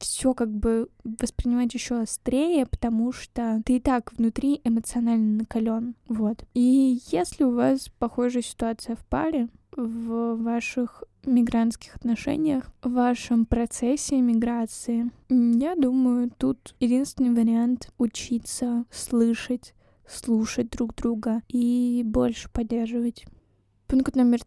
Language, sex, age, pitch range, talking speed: Russian, female, 10-29, 225-245 Hz, 115 wpm